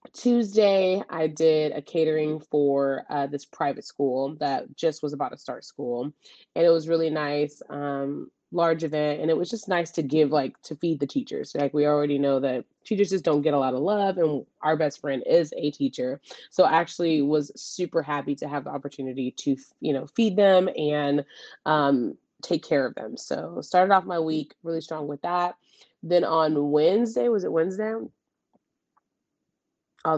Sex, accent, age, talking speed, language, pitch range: female, American, 20-39, 185 wpm, English, 145-170 Hz